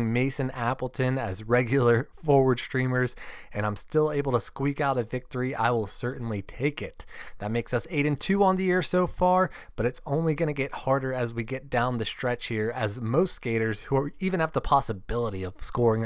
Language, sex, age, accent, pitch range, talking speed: English, male, 20-39, American, 120-160 Hz, 200 wpm